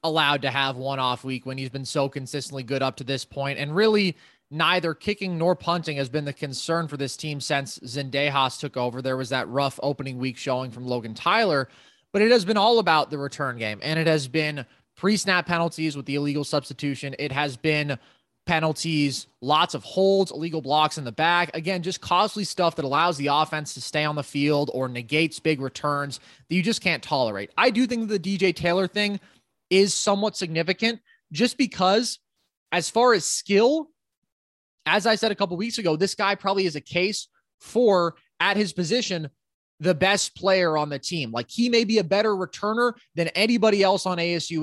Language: English